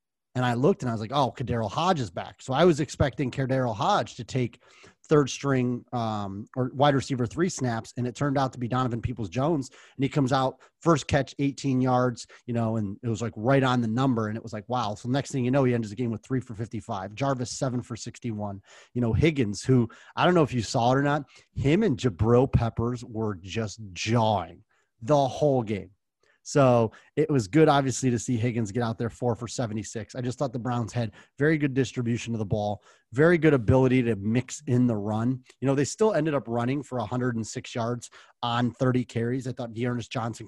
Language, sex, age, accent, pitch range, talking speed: English, male, 30-49, American, 115-130 Hz, 220 wpm